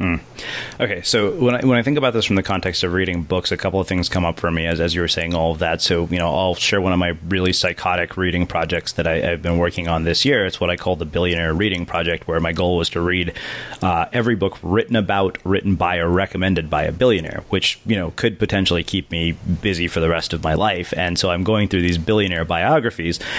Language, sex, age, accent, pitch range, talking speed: English, male, 30-49, American, 85-100 Hz, 255 wpm